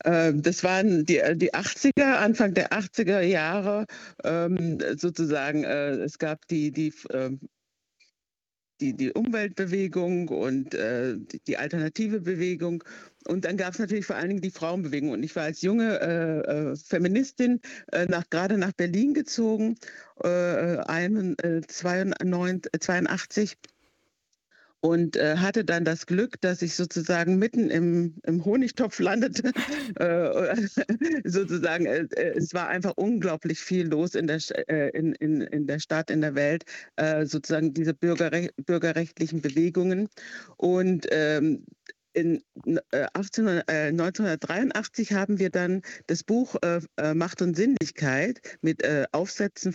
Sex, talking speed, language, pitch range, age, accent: female, 120 wpm, German, 160-200 Hz, 60-79, German